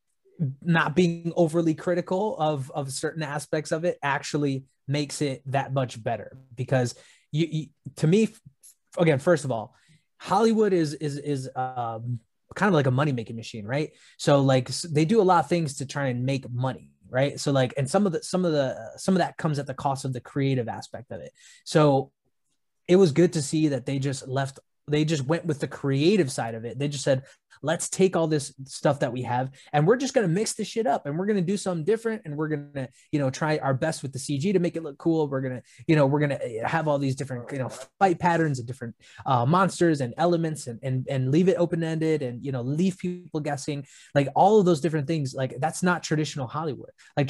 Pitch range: 135-165 Hz